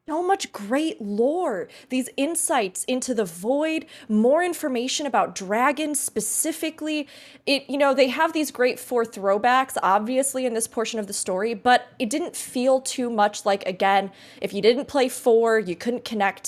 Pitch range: 220-305 Hz